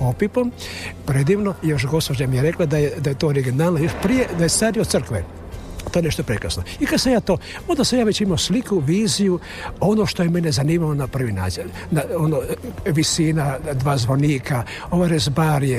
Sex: male